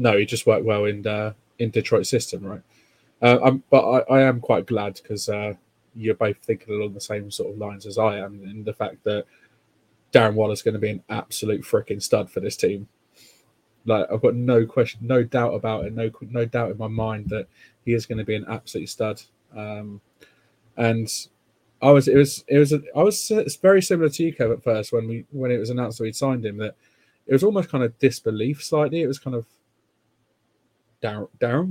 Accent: British